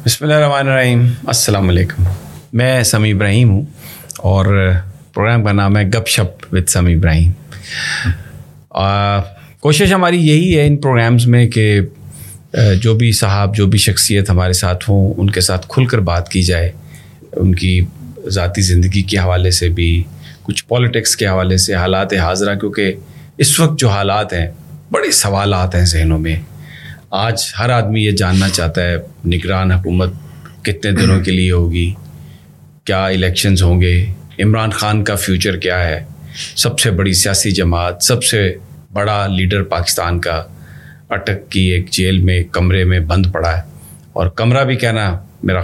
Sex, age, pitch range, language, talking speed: male, 30-49, 90-110 Hz, Urdu, 160 wpm